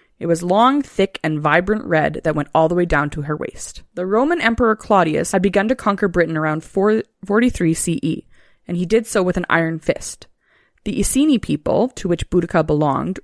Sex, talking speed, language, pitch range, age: female, 195 wpm, English, 160-210 Hz, 20-39